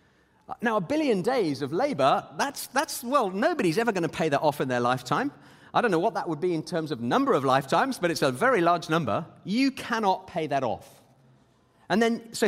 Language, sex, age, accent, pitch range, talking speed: English, male, 30-49, British, 150-225 Hz, 220 wpm